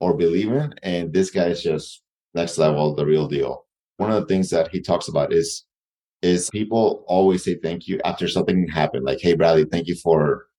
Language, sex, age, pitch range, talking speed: English, male, 30-49, 80-95 Hz, 205 wpm